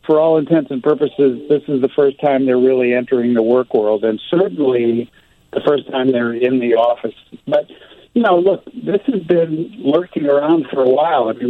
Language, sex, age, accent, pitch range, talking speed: English, male, 60-79, American, 120-150 Hz, 205 wpm